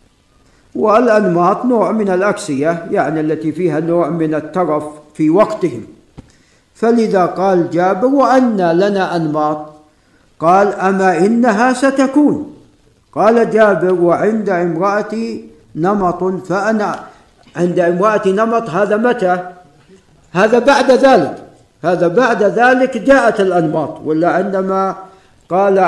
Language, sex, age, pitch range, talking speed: Arabic, male, 50-69, 170-220 Hz, 100 wpm